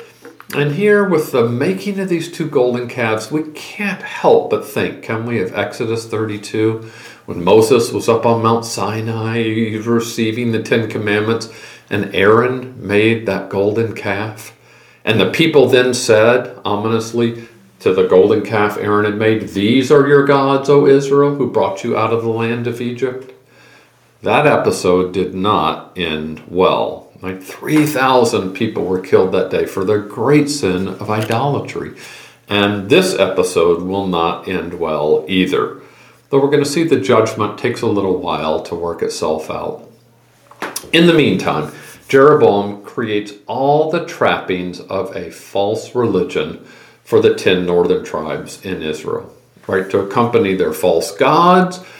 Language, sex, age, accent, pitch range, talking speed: English, male, 50-69, American, 110-155 Hz, 150 wpm